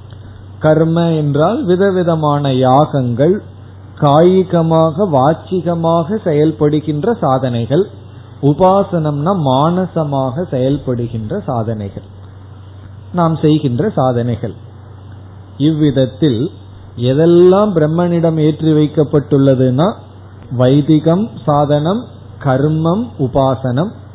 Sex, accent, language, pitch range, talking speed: male, native, Tamil, 120-165 Hz, 60 wpm